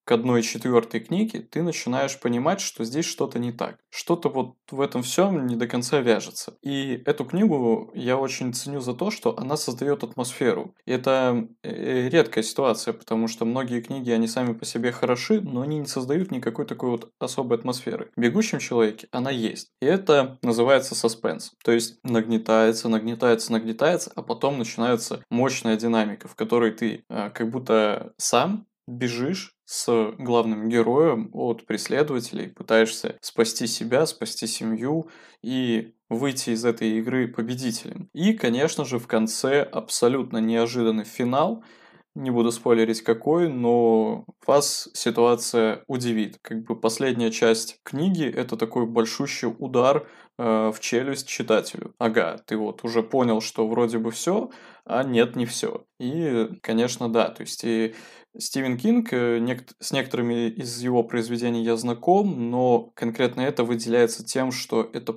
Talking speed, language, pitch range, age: 150 wpm, Russian, 115-130 Hz, 20-39